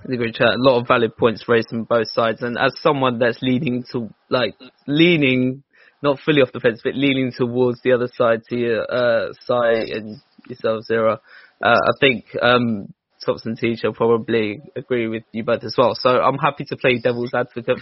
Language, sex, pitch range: English, male, 115-135 Hz